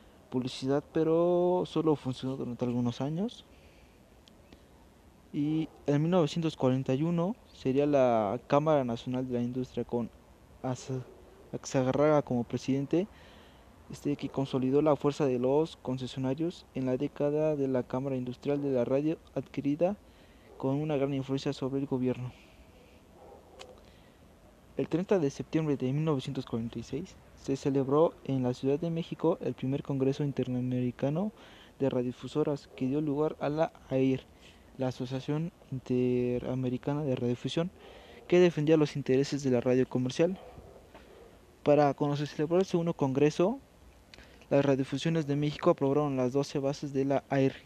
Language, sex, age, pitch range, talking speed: Spanish, male, 20-39, 130-150 Hz, 130 wpm